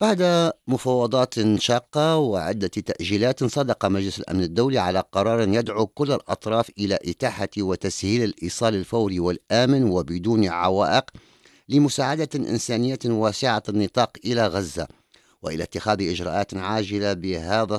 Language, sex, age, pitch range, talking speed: English, male, 50-69, 95-115 Hz, 110 wpm